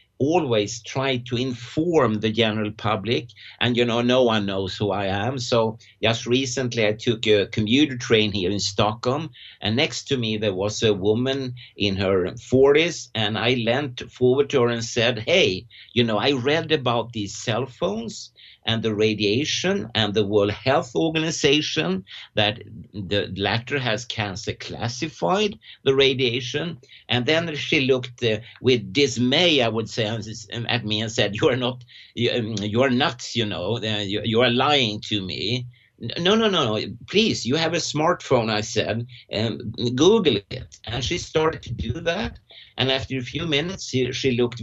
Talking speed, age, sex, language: 170 wpm, 60-79, male, English